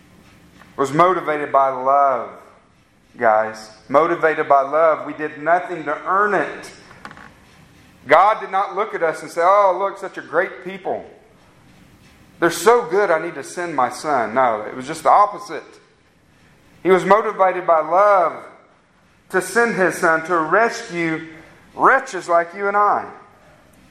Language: English